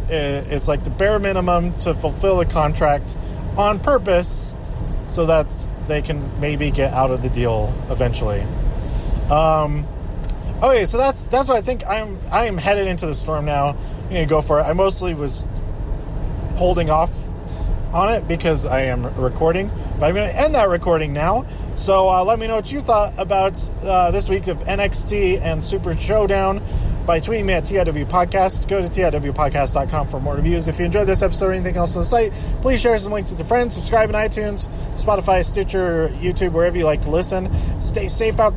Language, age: English, 30-49